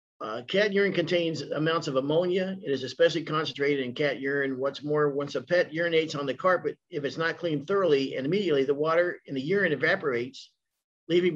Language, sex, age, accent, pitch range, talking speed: English, male, 50-69, American, 140-170 Hz, 195 wpm